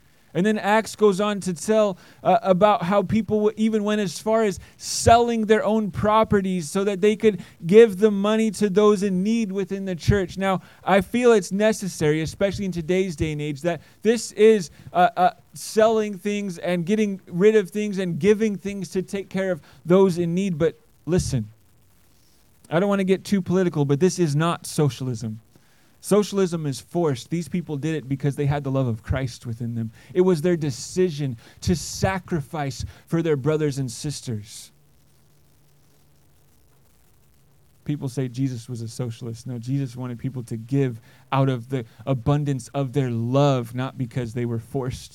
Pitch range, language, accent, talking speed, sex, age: 120-195 Hz, English, American, 175 wpm, male, 30-49